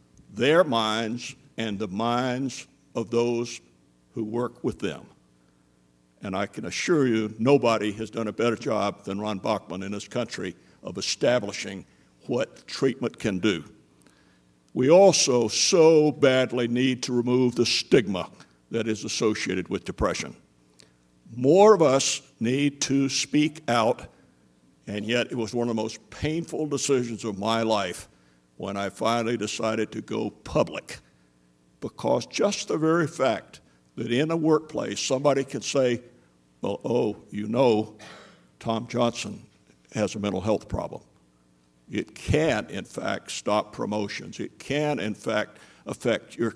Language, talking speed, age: English, 140 wpm, 60-79